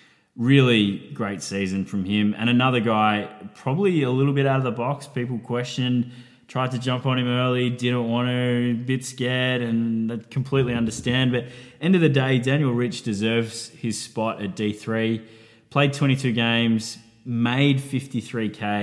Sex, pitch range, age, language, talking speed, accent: male, 105-130 Hz, 20-39, English, 160 wpm, Australian